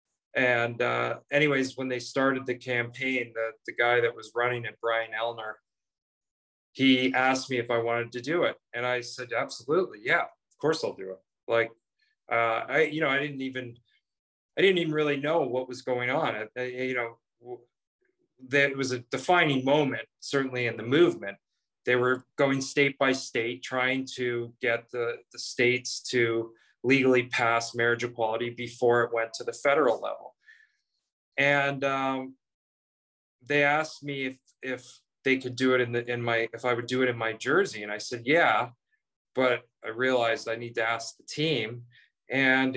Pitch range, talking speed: 120-135 Hz, 175 wpm